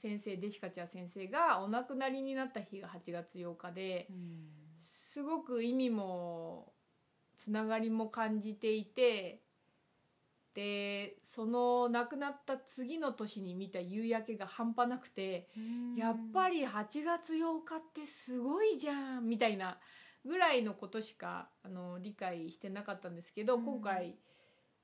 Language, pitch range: Japanese, 185-260 Hz